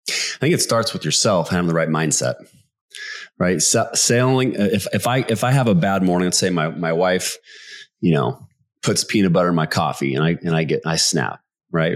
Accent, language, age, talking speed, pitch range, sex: American, English, 30-49, 215 wpm, 80-100 Hz, male